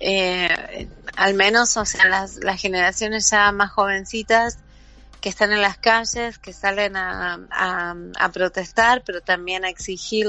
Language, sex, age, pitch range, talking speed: Spanish, female, 30-49, 185-205 Hz, 150 wpm